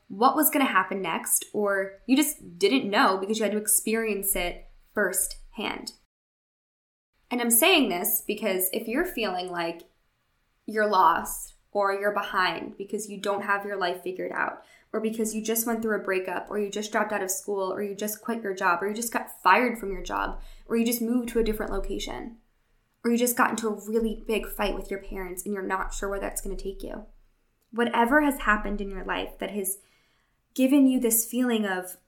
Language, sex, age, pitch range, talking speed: English, female, 10-29, 195-235 Hz, 210 wpm